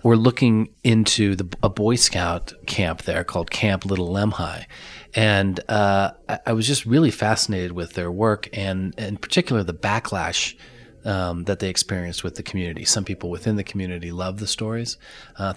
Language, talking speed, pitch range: English, 175 wpm, 90-110 Hz